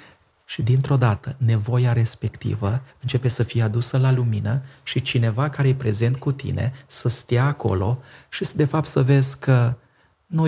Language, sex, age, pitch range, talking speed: Romanian, male, 30-49, 115-135 Hz, 165 wpm